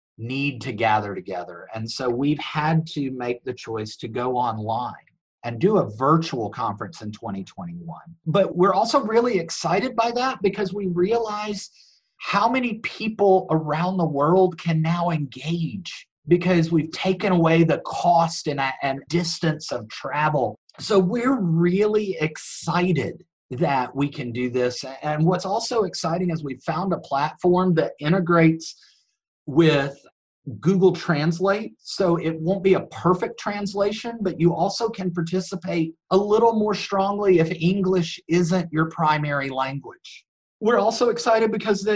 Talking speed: 145 wpm